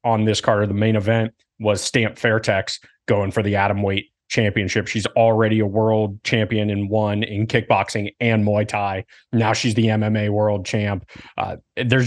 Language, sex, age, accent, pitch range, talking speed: English, male, 30-49, American, 100-115 Hz, 175 wpm